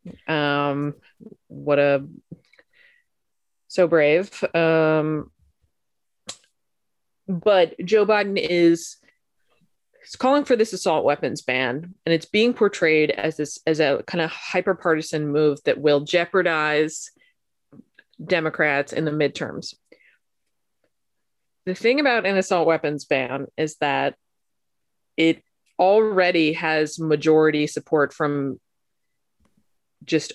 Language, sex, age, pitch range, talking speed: English, female, 30-49, 150-185 Hz, 105 wpm